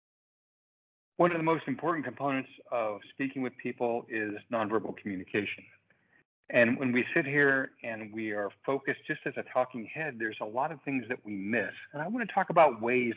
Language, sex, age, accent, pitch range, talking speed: English, male, 50-69, American, 115-155 Hz, 190 wpm